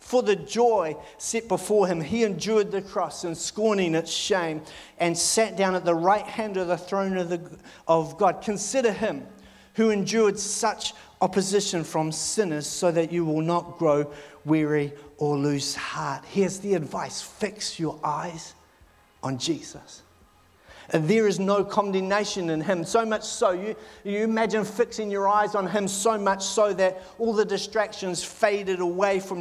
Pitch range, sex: 180-215 Hz, male